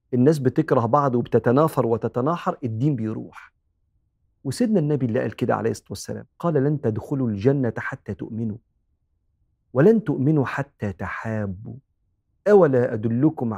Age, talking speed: 50-69, 120 wpm